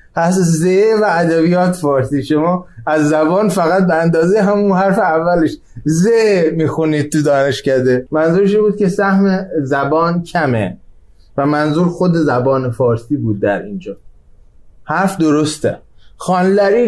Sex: male